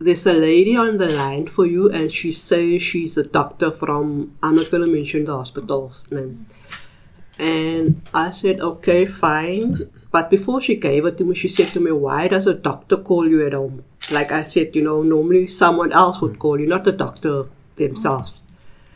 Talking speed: 195 wpm